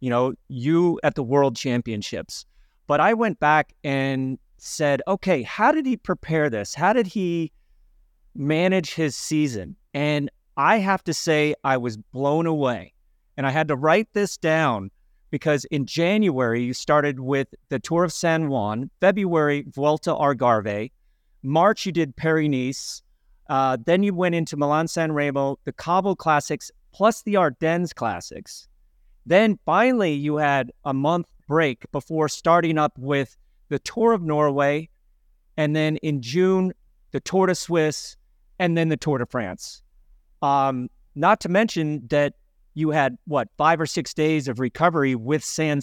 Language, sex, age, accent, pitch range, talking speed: English, male, 30-49, American, 135-170 Hz, 155 wpm